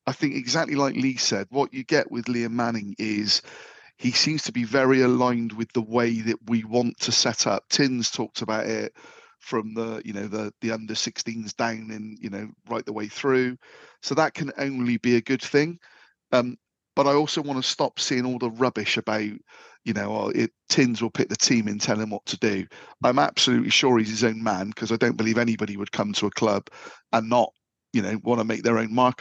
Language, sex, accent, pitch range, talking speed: English, male, British, 115-135 Hz, 225 wpm